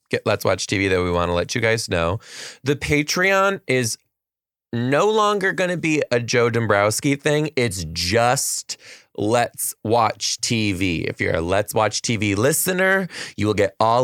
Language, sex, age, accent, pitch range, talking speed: English, male, 20-39, American, 95-130 Hz, 170 wpm